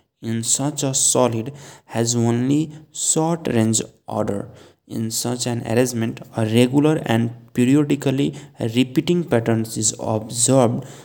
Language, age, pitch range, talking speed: Hindi, 20-39, 115-140 Hz, 115 wpm